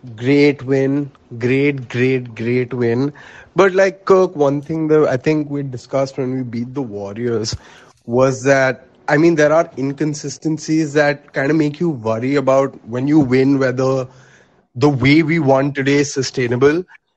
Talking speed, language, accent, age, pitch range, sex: 160 wpm, English, Indian, 20-39, 130-155 Hz, male